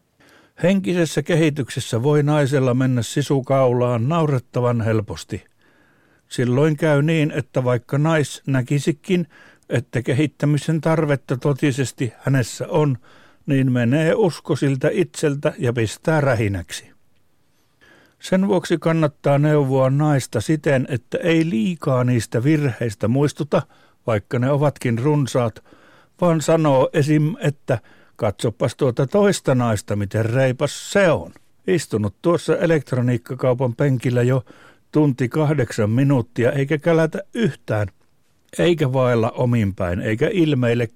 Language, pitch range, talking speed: Finnish, 120-155 Hz, 105 wpm